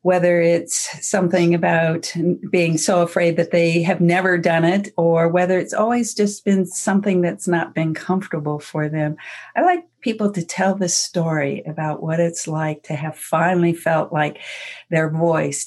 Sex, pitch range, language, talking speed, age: female, 160-200 Hz, English, 170 wpm, 50-69